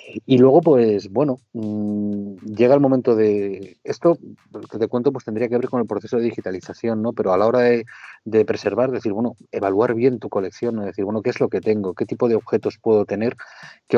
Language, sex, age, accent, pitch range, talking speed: Spanish, male, 30-49, Spanish, 100-115 Hz, 215 wpm